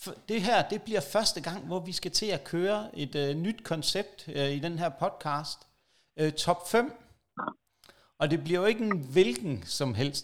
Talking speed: 195 wpm